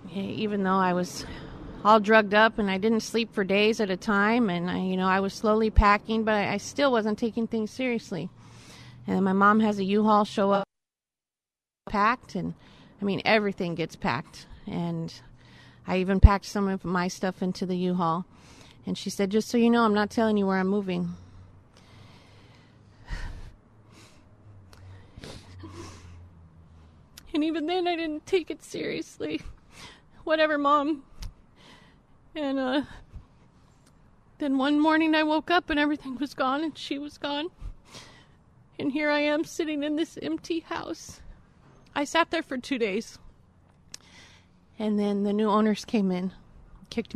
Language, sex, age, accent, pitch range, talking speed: English, female, 30-49, American, 185-290 Hz, 155 wpm